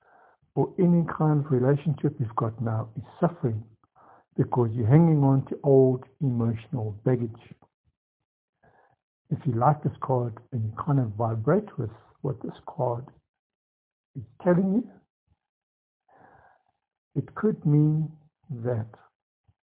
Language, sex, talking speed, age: English, male, 120 wpm, 60-79